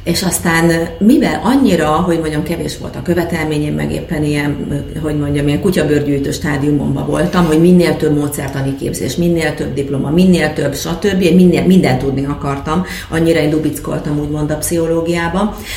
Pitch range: 150-185 Hz